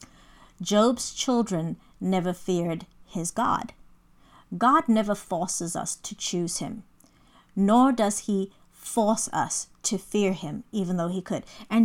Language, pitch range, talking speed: English, 175-220 Hz, 130 wpm